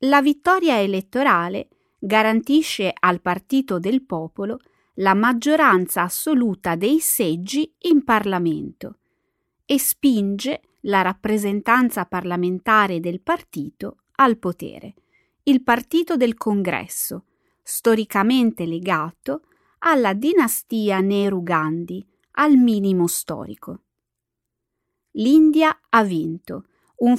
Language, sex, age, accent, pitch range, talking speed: Italian, female, 30-49, native, 190-285 Hz, 90 wpm